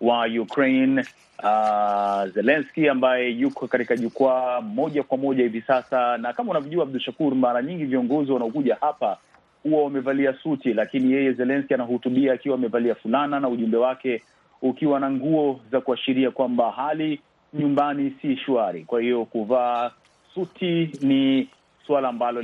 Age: 30-49